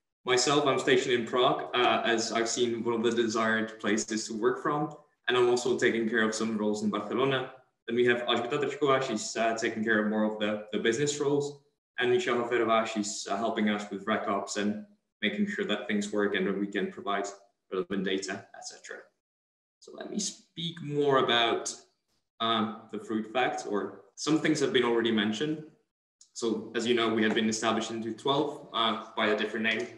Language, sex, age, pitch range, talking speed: English, male, 20-39, 105-135 Hz, 190 wpm